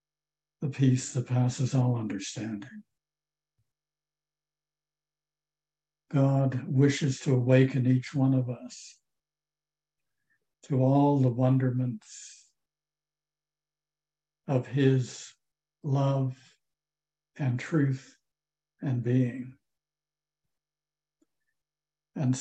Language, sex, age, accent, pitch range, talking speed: English, male, 60-79, American, 130-155 Hz, 70 wpm